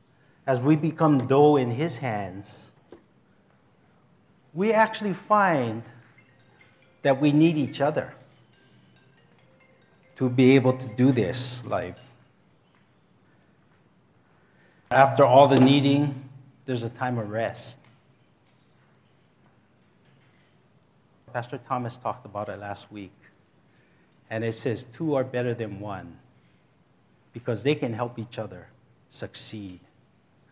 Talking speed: 105 wpm